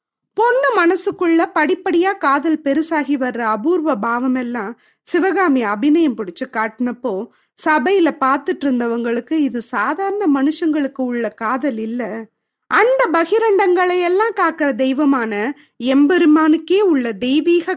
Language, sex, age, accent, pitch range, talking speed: Tamil, female, 20-39, native, 260-360 Hz, 100 wpm